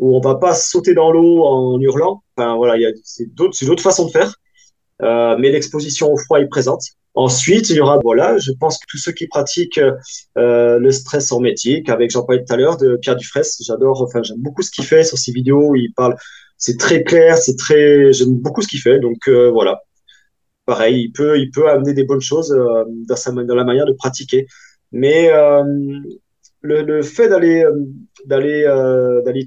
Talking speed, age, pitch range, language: 215 wpm, 20-39, 130-170 Hz, French